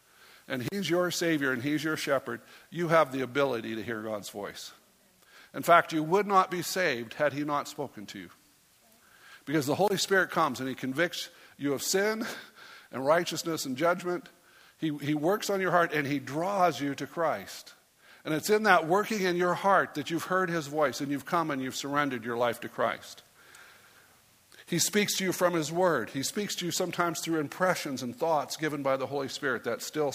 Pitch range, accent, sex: 135-185 Hz, American, male